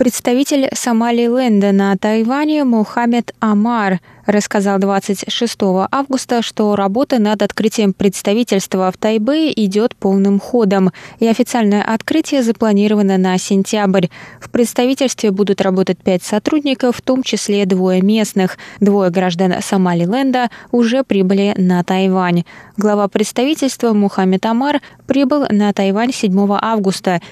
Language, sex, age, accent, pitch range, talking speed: Russian, female, 20-39, native, 190-240 Hz, 120 wpm